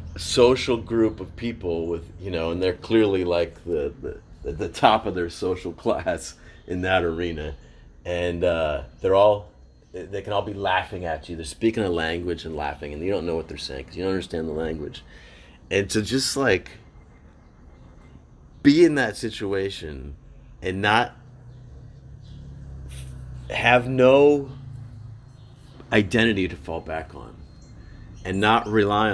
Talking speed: 150 wpm